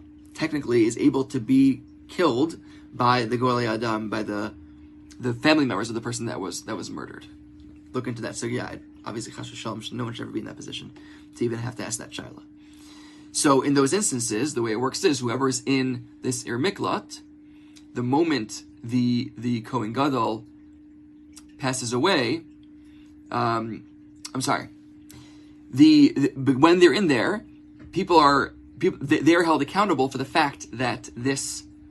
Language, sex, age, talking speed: English, male, 20-39, 165 wpm